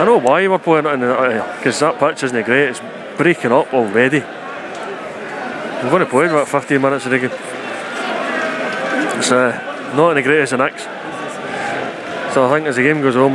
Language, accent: English, British